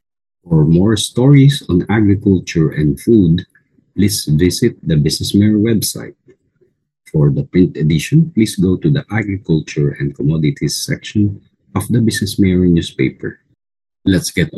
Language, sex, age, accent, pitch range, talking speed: English, male, 50-69, Filipino, 75-105 Hz, 130 wpm